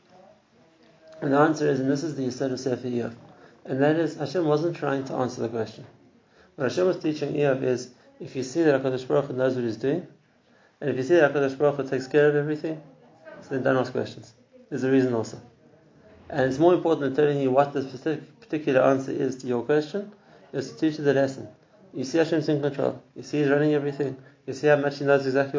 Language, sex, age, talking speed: English, male, 30-49, 225 wpm